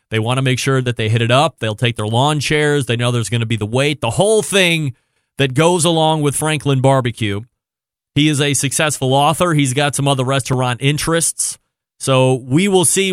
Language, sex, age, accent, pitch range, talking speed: English, male, 30-49, American, 120-155 Hz, 215 wpm